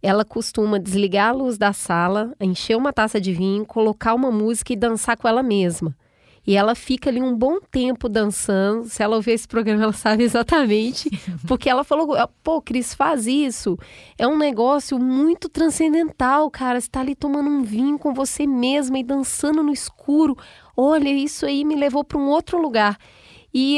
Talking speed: 180 wpm